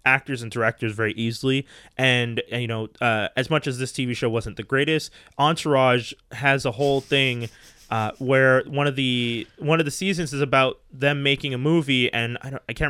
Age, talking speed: 20-39, 205 wpm